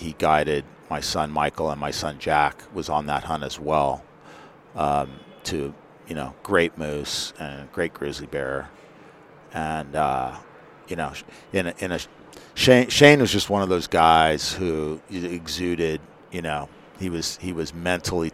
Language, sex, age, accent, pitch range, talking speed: English, male, 50-69, American, 75-85 Hz, 160 wpm